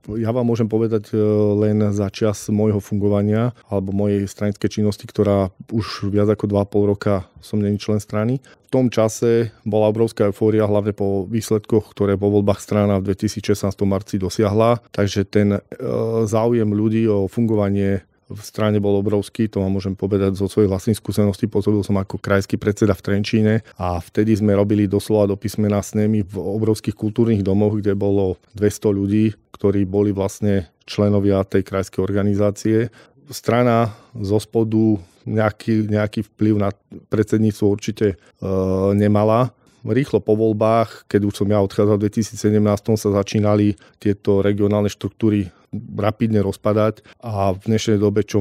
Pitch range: 100-110 Hz